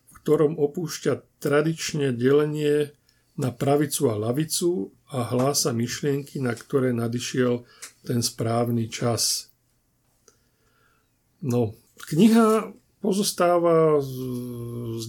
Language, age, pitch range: Slovak, 50-69, 125-155 Hz